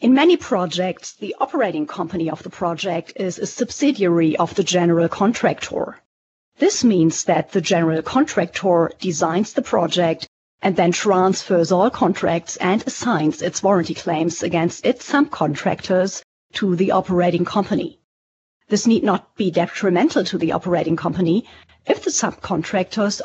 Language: English